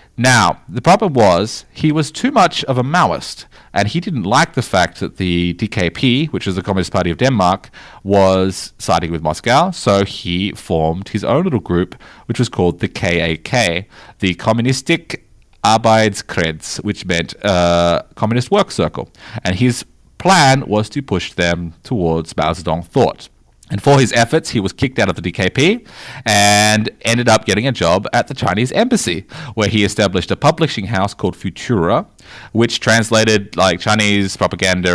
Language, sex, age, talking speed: English, male, 30-49, 170 wpm